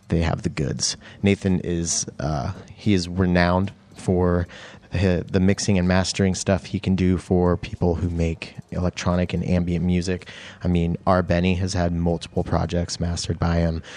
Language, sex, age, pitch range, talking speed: English, male, 30-49, 90-115 Hz, 165 wpm